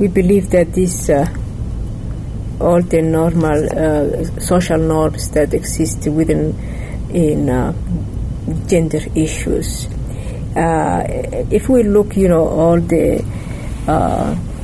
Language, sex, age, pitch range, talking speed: English, female, 50-69, 130-175 Hz, 110 wpm